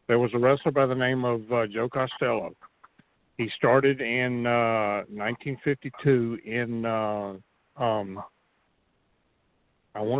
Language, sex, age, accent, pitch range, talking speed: English, male, 50-69, American, 105-130 Hz, 125 wpm